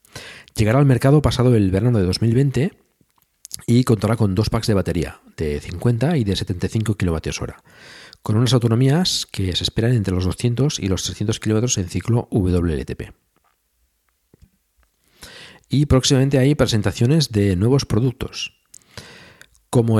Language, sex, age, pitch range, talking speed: Spanish, male, 50-69, 95-125 Hz, 135 wpm